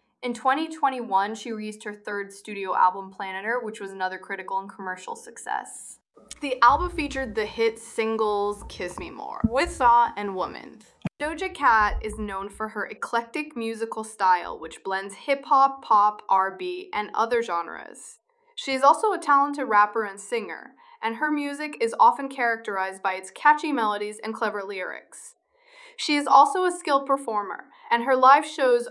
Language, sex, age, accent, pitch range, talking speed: English, female, 20-39, American, 200-270 Hz, 160 wpm